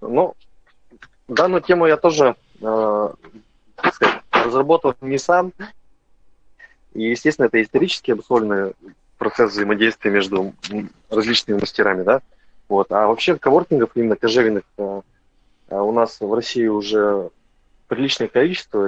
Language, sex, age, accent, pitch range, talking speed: Russian, male, 20-39, native, 105-130 Hz, 115 wpm